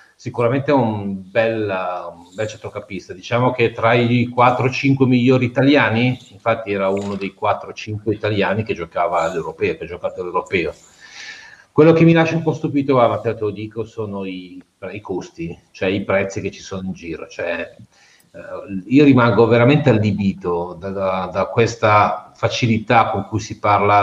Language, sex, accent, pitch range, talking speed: Italian, male, native, 100-130 Hz, 155 wpm